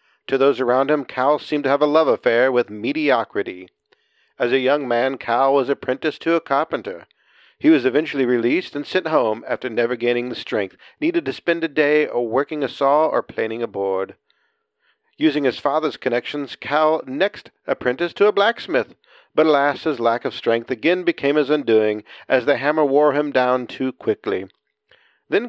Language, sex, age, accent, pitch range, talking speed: English, male, 50-69, American, 135-185 Hz, 180 wpm